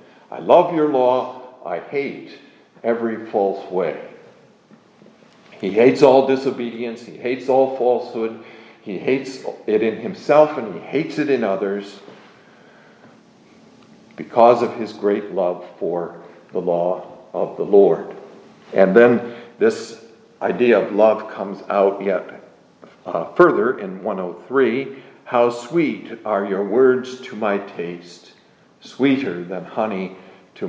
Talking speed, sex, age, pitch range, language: 125 wpm, male, 50-69, 100-125 Hz, English